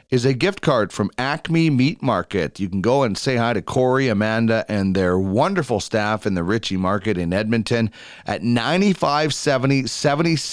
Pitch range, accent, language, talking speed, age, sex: 105-140 Hz, American, English, 165 wpm, 30-49, male